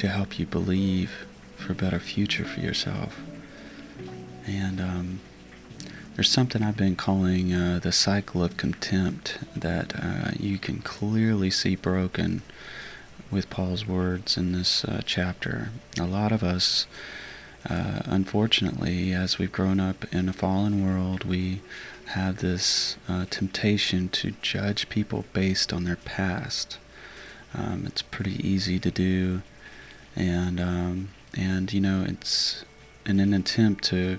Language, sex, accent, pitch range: English, male, American, 90-100 Hz